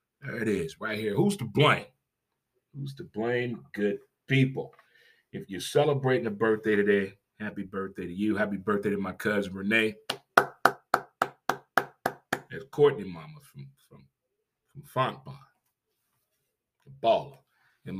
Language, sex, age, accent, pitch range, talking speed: English, male, 30-49, American, 105-145 Hz, 130 wpm